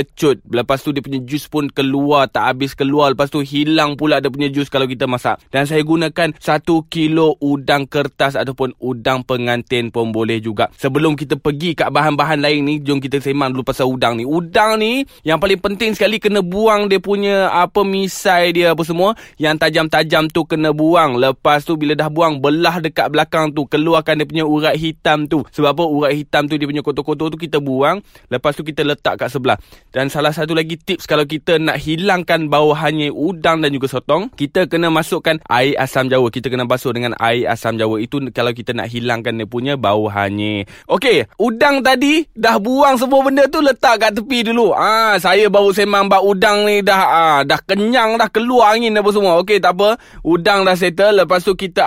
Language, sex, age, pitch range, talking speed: Malay, male, 20-39, 145-190 Hz, 200 wpm